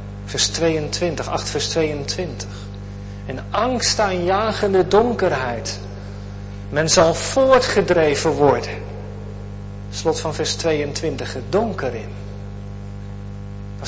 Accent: Dutch